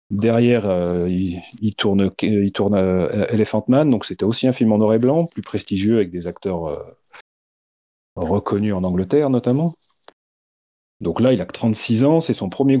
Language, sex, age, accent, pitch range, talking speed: French, male, 30-49, French, 95-125 Hz, 190 wpm